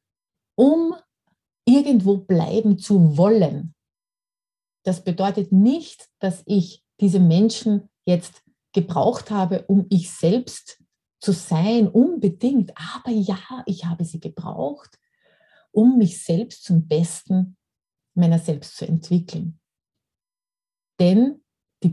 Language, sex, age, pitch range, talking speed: German, female, 30-49, 175-245 Hz, 105 wpm